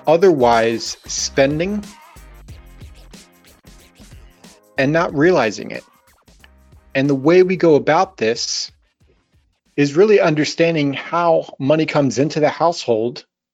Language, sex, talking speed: English, male, 95 wpm